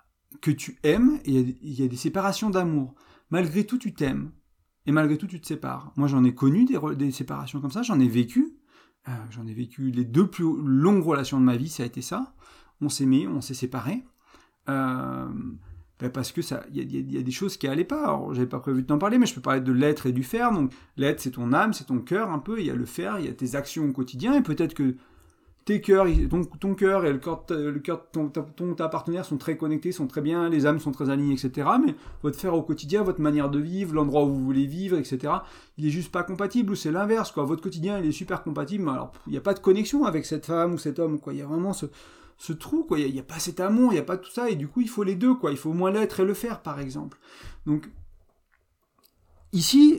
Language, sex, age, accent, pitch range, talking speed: French, male, 40-59, French, 135-190 Hz, 265 wpm